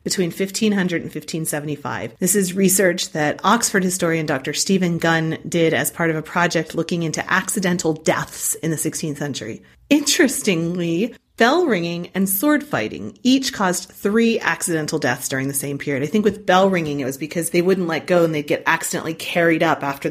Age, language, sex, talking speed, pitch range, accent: 30-49, English, female, 180 wpm, 155-205 Hz, American